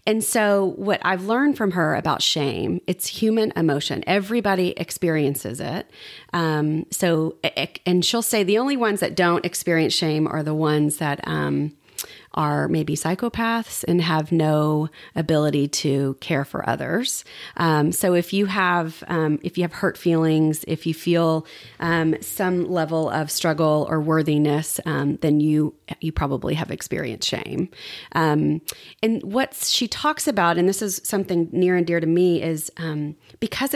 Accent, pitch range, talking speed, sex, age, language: American, 155-190 Hz, 160 wpm, female, 30-49, English